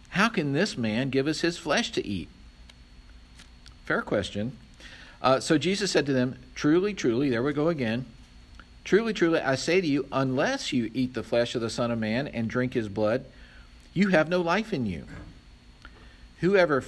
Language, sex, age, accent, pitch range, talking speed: English, male, 50-69, American, 100-135 Hz, 180 wpm